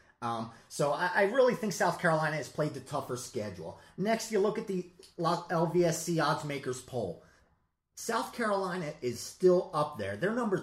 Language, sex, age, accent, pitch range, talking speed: English, male, 30-49, American, 150-195 Hz, 165 wpm